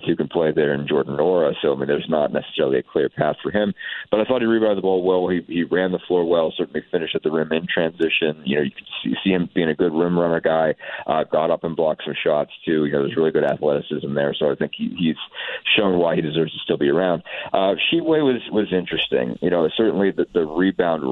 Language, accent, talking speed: English, American, 260 wpm